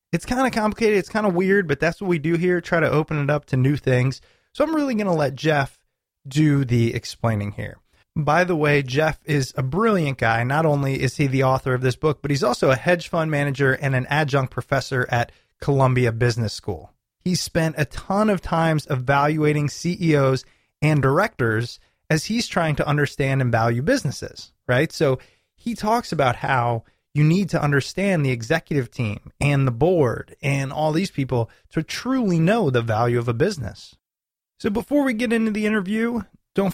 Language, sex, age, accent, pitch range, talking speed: English, male, 20-39, American, 130-170 Hz, 195 wpm